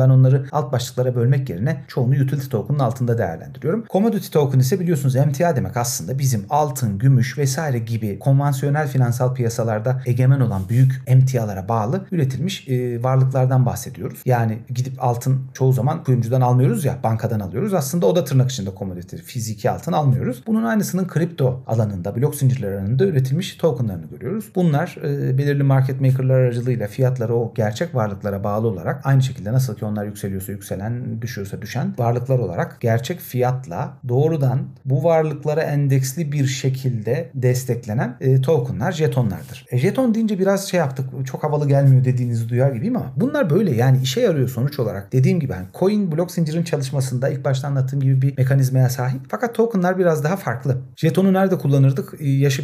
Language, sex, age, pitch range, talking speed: Turkish, male, 40-59, 125-145 Hz, 155 wpm